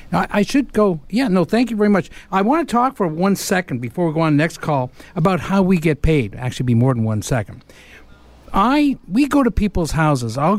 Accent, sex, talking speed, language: American, male, 245 wpm, English